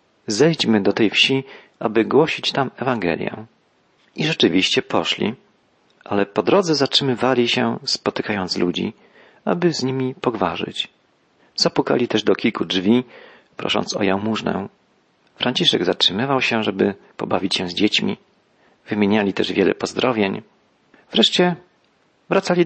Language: Polish